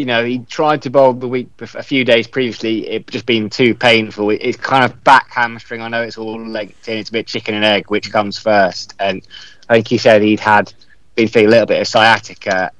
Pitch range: 105-120 Hz